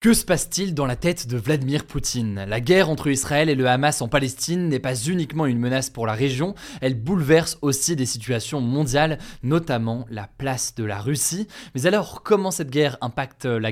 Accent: French